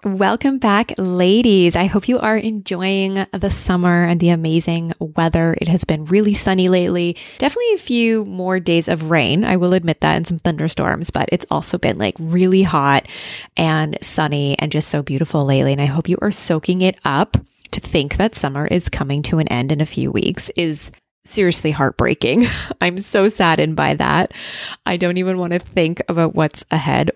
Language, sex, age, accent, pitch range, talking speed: English, female, 20-39, American, 155-195 Hz, 190 wpm